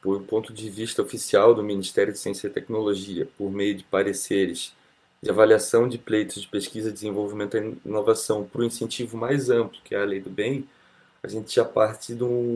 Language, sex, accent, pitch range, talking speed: Portuguese, male, Brazilian, 105-135 Hz, 205 wpm